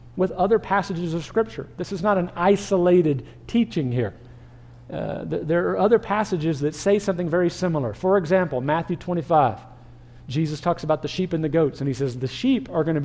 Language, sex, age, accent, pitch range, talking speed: English, male, 50-69, American, 125-180 Hz, 195 wpm